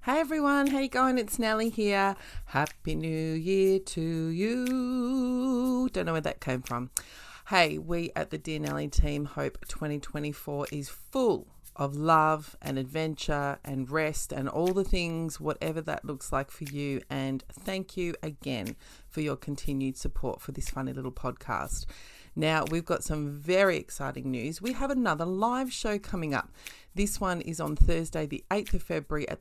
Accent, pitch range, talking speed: Australian, 145-190 Hz, 170 wpm